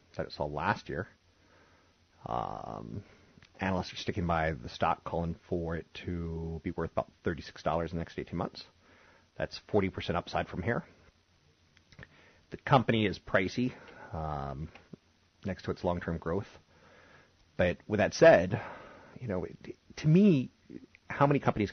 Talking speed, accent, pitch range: 140 wpm, American, 80-100 Hz